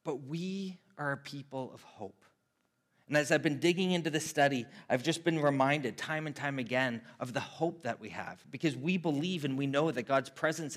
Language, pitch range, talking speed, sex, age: English, 120-155 Hz, 210 wpm, male, 30-49